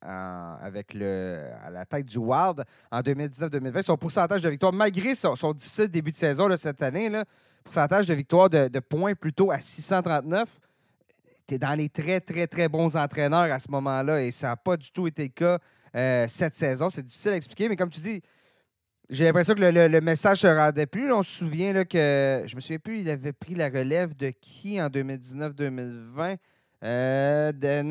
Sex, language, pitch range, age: male, French, 145-195 Hz, 30-49